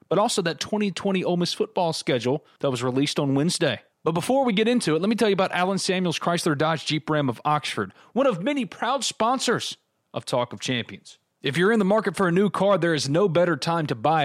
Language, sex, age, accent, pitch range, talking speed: English, male, 30-49, American, 140-185 Hz, 240 wpm